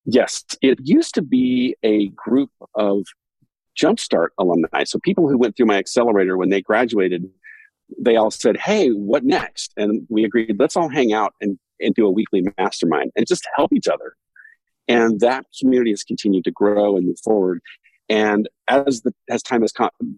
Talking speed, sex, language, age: 180 wpm, male, English, 50-69